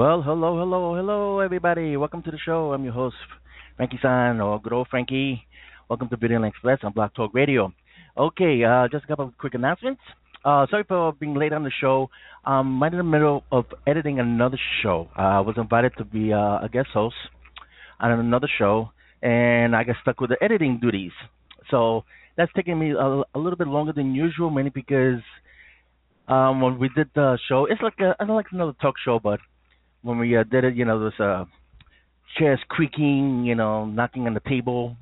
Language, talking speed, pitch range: English, 195 wpm, 115-145 Hz